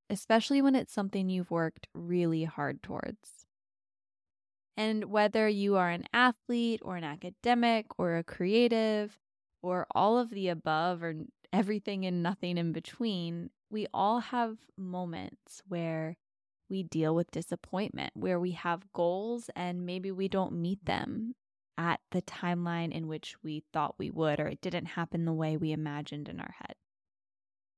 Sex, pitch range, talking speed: female, 165-205 Hz, 155 wpm